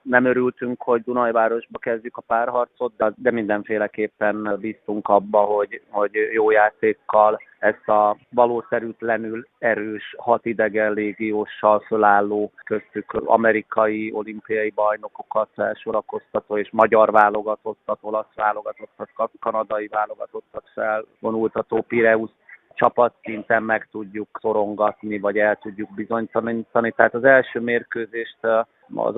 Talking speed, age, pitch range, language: 110 wpm, 30-49, 110-115 Hz, Hungarian